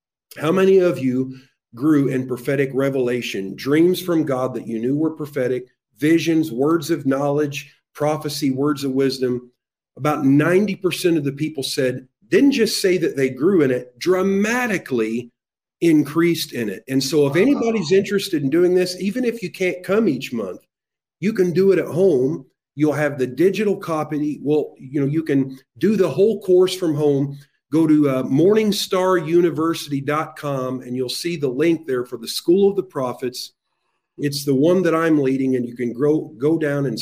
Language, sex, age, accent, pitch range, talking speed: English, male, 40-59, American, 135-180 Hz, 175 wpm